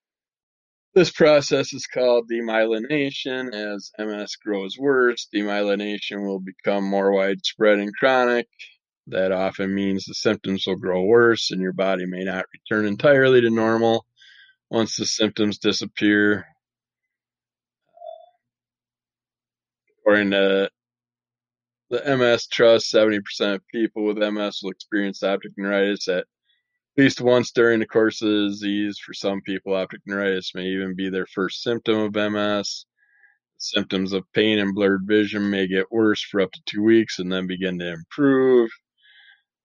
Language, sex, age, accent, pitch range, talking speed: English, male, 20-39, American, 100-120 Hz, 140 wpm